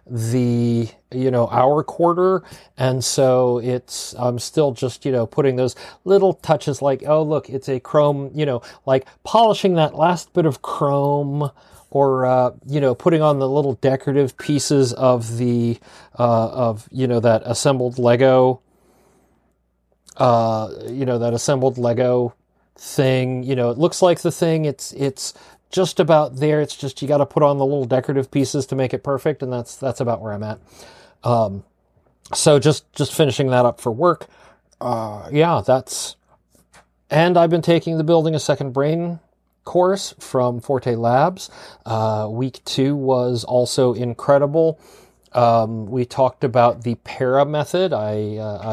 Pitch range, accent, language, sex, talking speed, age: 120-150 Hz, American, English, male, 165 wpm, 30-49